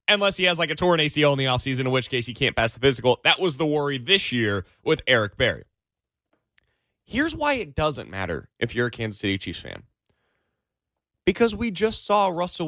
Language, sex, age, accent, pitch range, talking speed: English, male, 30-49, American, 125-205 Hz, 210 wpm